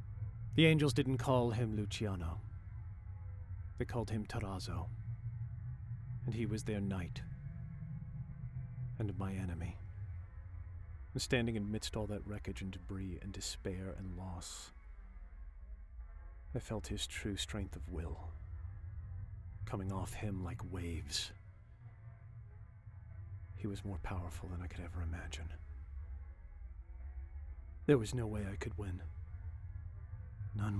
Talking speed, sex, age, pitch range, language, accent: 115 wpm, male, 40-59, 85-110 Hz, English, American